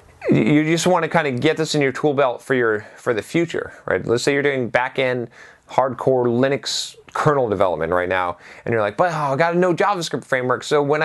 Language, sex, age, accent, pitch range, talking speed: English, male, 30-49, American, 125-165 Hz, 235 wpm